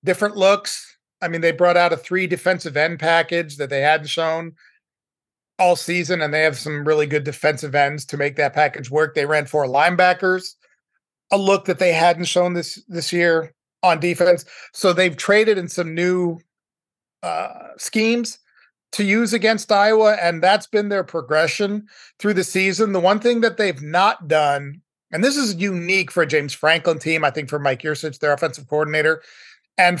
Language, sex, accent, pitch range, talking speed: English, male, American, 155-190 Hz, 180 wpm